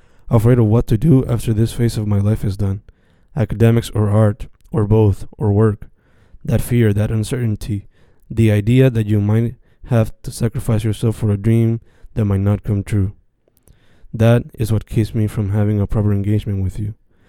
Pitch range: 105-115 Hz